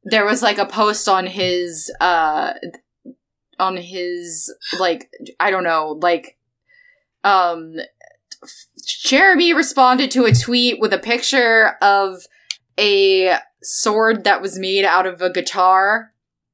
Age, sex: 20-39, female